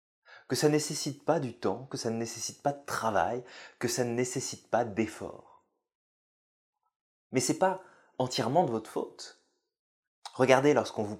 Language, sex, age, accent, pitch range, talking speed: French, male, 30-49, French, 120-190 Hz, 160 wpm